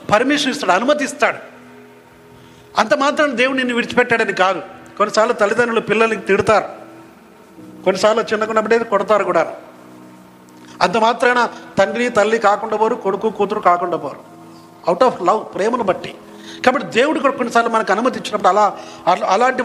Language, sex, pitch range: Telugu, male, 175-230 Hz